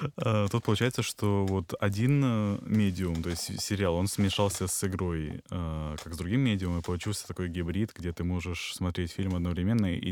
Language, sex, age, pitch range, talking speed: Russian, male, 20-39, 90-105 Hz, 165 wpm